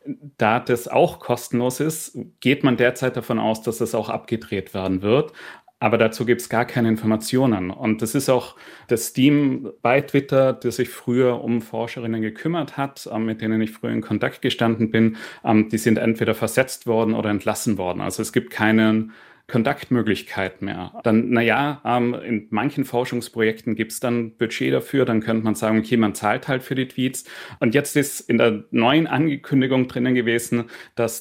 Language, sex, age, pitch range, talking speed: German, male, 30-49, 110-125 Hz, 175 wpm